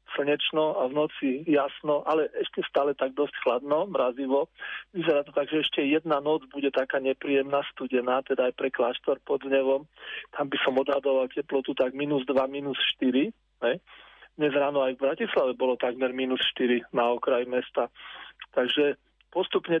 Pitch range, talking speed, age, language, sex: 135-155 Hz, 165 wpm, 40-59, Slovak, male